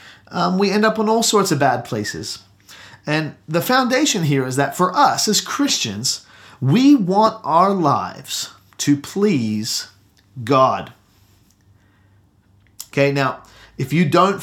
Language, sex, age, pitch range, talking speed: English, male, 30-49, 115-190 Hz, 135 wpm